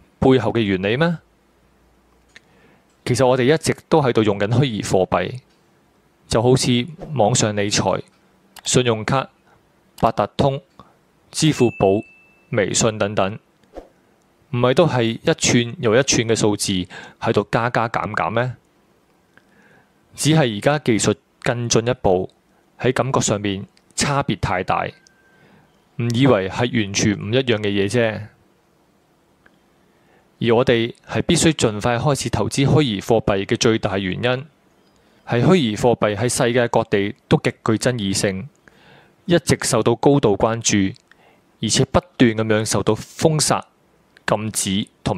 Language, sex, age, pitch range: Chinese, male, 20-39, 105-130 Hz